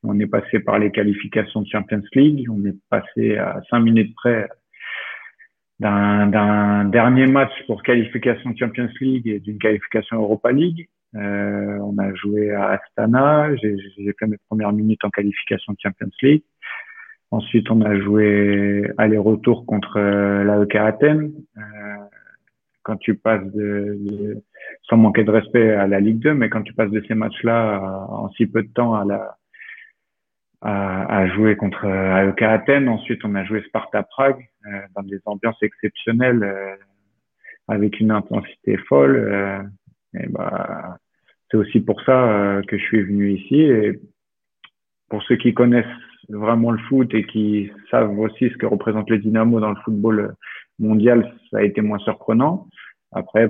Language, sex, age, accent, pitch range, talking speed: French, male, 50-69, French, 100-115 Hz, 160 wpm